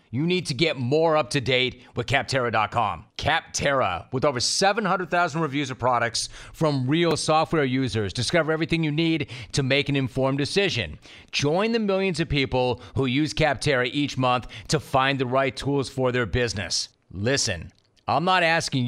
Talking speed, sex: 160 wpm, male